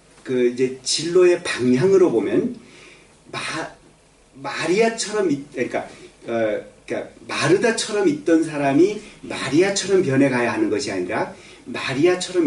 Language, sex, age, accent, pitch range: Korean, male, 40-59, native, 125-195 Hz